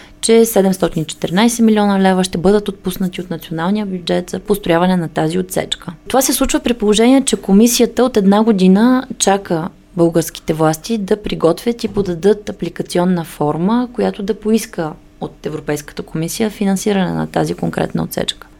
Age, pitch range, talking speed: 20-39, 175-220 Hz, 145 wpm